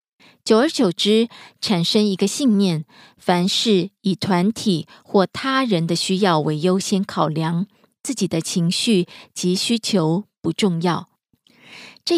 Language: Korean